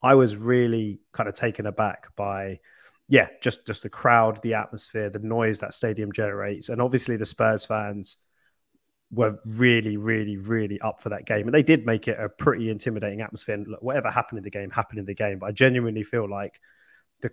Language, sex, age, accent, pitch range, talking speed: English, male, 20-39, British, 105-115 Hz, 200 wpm